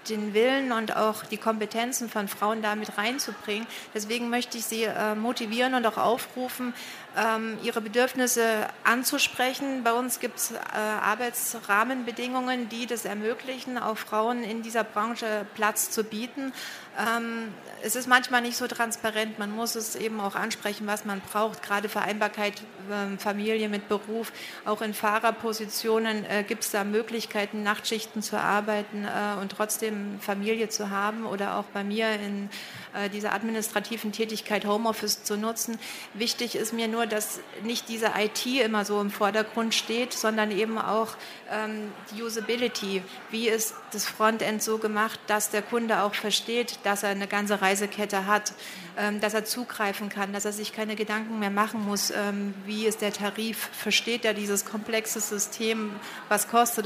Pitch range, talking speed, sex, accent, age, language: 210-230 Hz, 150 wpm, female, German, 40-59, German